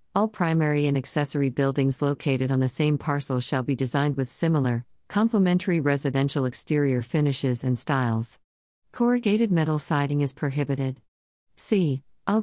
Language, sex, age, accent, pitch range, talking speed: English, female, 50-69, American, 130-160 Hz, 135 wpm